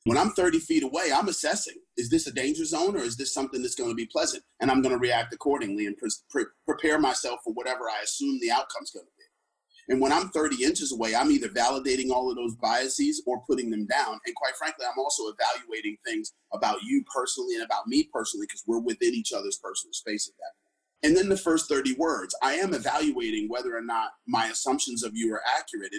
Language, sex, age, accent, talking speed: English, male, 30-49, American, 220 wpm